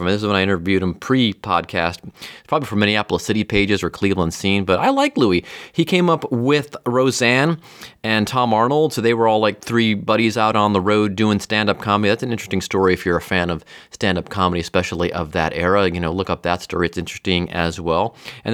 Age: 30-49